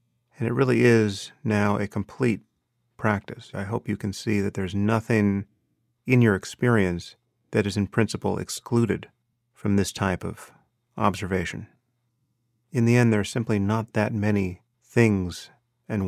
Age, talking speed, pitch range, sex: 40-59, 150 wpm, 100-120 Hz, male